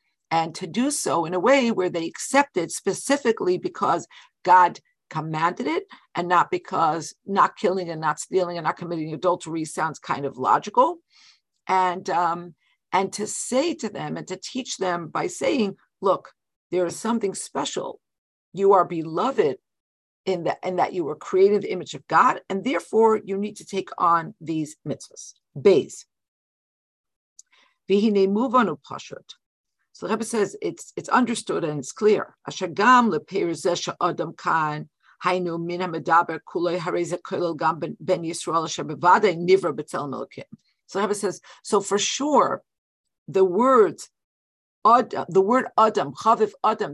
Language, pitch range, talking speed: English, 175-250 Hz, 130 wpm